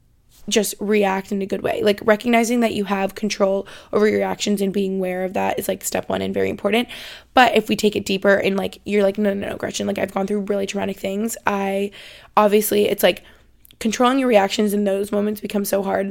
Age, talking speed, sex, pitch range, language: 20-39, 225 wpm, female, 195-210 Hz, English